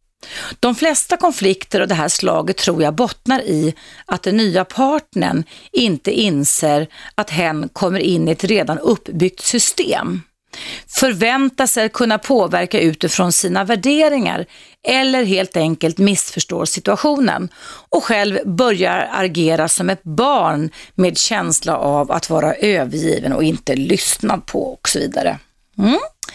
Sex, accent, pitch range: female, native, 180-265 Hz